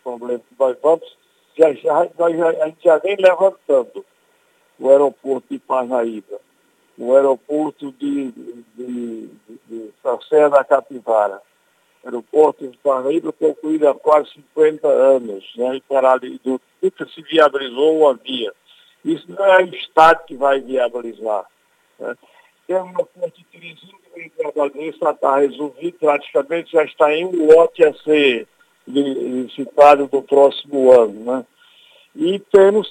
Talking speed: 135 wpm